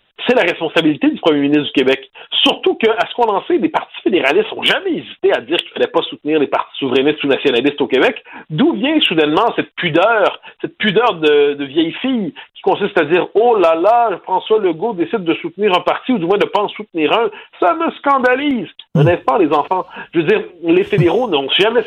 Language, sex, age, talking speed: French, male, 50-69, 220 wpm